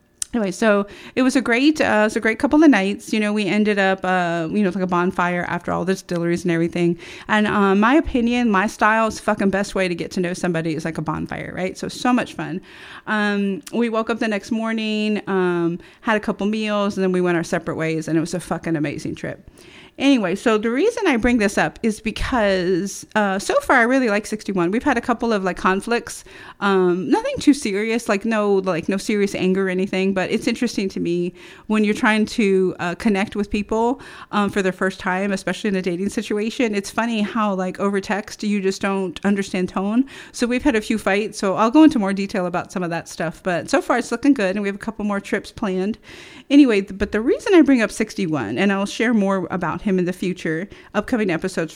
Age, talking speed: 30-49, 235 wpm